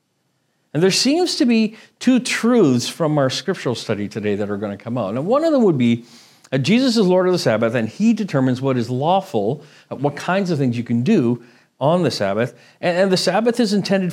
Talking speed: 225 wpm